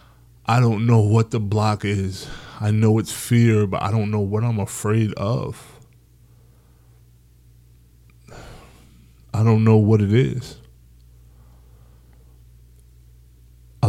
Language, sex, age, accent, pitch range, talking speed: English, male, 20-39, American, 95-110 Hz, 110 wpm